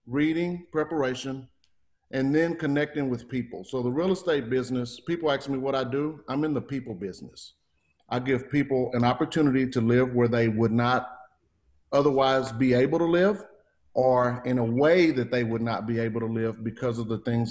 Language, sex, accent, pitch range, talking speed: English, male, American, 110-135 Hz, 190 wpm